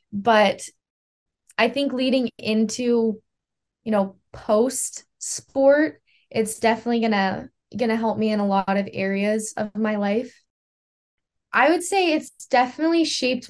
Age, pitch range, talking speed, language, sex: 10-29, 210-250 Hz, 130 wpm, English, female